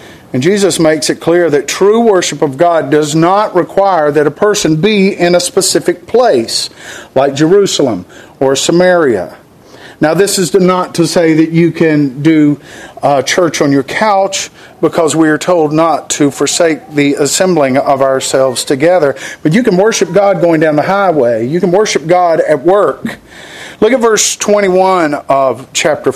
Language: English